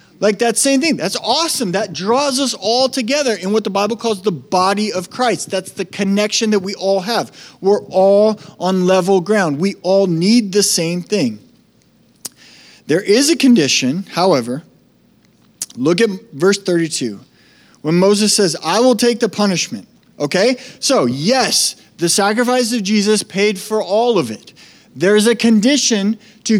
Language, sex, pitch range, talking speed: English, male, 170-230 Hz, 160 wpm